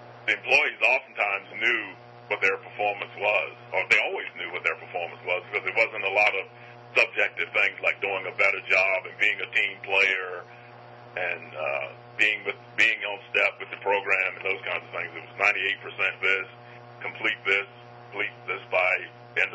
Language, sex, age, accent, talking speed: English, male, 40-59, American, 180 wpm